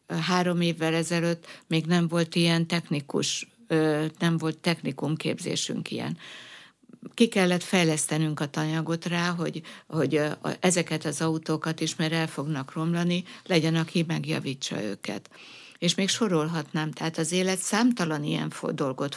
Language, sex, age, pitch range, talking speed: Hungarian, female, 60-79, 155-175 Hz, 130 wpm